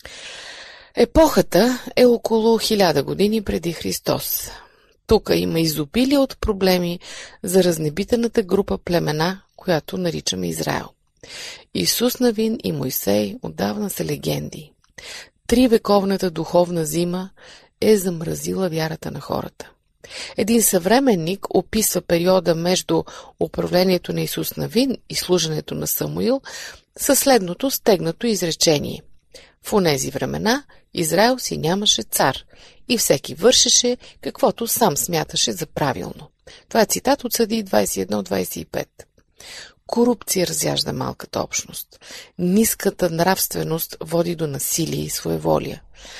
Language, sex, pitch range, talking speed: Bulgarian, female, 160-230 Hz, 110 wpm